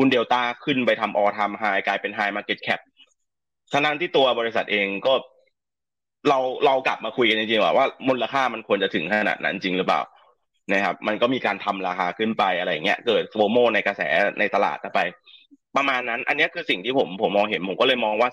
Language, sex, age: Thai, male, 20-39